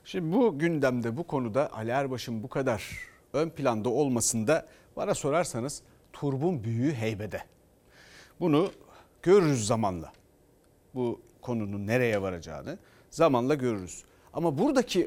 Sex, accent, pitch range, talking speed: male, native, 115-150 Hz, 110 wpm